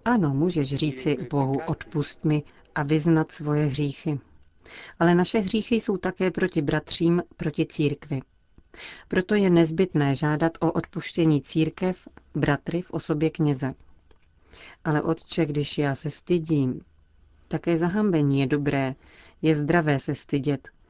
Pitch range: 145-170 Hz